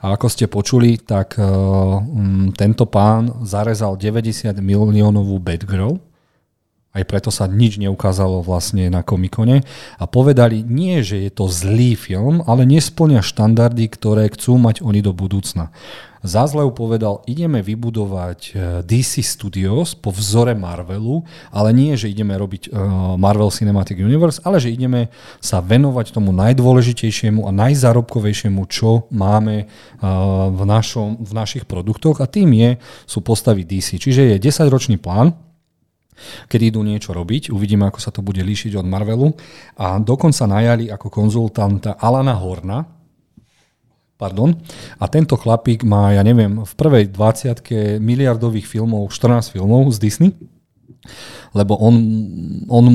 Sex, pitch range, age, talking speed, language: male, 100-120 Hz, 40-59, 135 wpm, Slovak